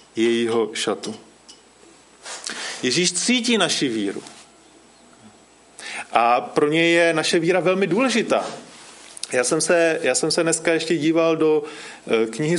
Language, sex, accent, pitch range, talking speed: Czech, male, native, 145-200 Hz, 120 wpm